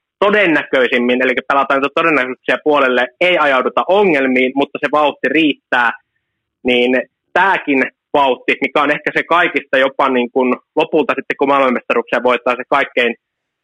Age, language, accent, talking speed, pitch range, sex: 20-39, Finnish, native, 130 wpm, 120-140 Hz, male